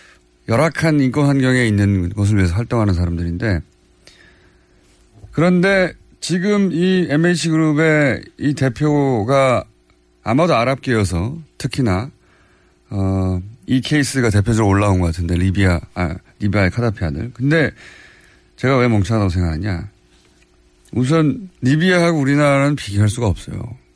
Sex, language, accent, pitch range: male, Korean, native, 95-150 Hz